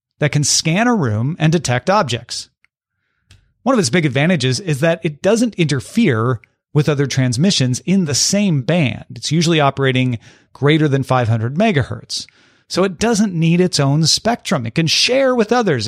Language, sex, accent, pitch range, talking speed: English, male, American, 130-195 Hz, 165 wpm